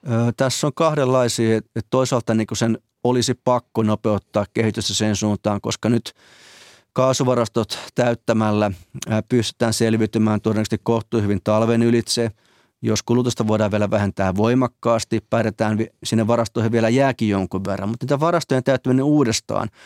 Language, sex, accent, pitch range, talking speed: Finnish, male, native, 110-125 Hz, 135 wpm